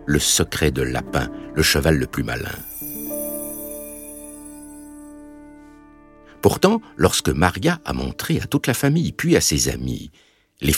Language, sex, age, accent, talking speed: French, male, 60-79, French, 130 wpm